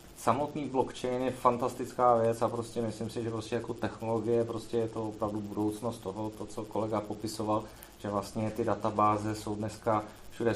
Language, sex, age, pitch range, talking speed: Czech, male, 30-49, 110-120 Hz, 170 wpm